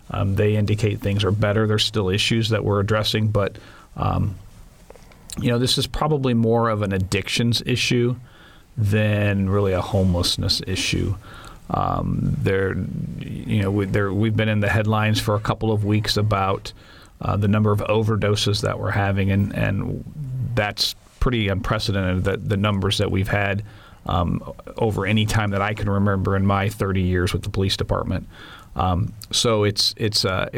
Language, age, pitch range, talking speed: English, 40-59, 100-110 Hz, 170 wpm